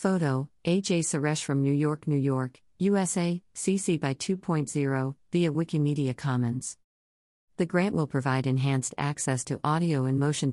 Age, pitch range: 50-69, 130-155 Hz